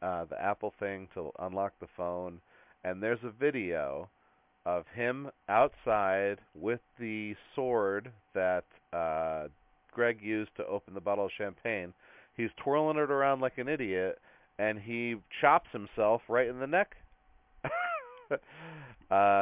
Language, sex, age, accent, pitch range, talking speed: English, male, 40-59, American, 90-115 Hz, 135 wpm